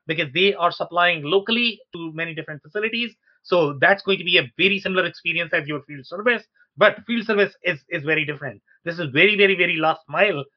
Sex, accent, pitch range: male, Indian, 160-215 Hz